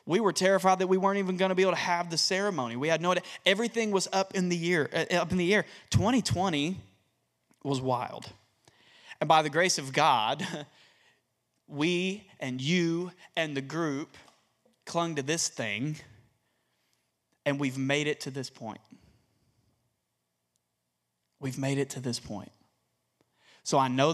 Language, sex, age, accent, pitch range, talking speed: English, male, 30-49, American, 115-150 Hz, 155 wpm